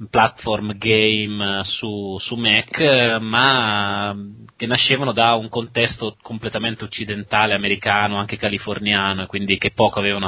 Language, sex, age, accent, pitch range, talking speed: Italian, male, 20-39, native, 100-115 Hz, 125 wpm